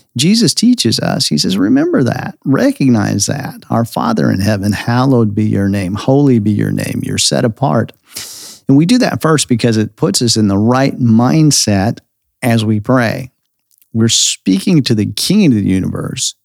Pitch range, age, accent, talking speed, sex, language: 105-135 Hz, 50-69, American, 175 wpm, male, English